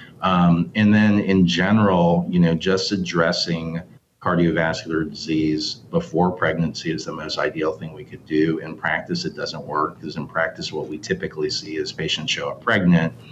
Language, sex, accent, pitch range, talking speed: English, male, American, 80-95 Hz, 170 wpm